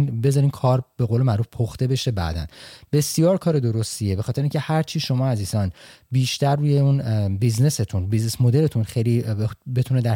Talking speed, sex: 160 wpm, male